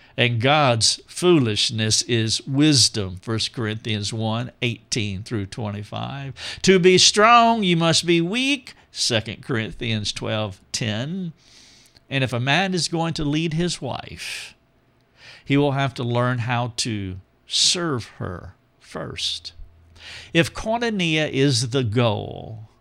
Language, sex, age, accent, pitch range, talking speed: English, male, 50-69, American, 115-165 Hz, 125 wpm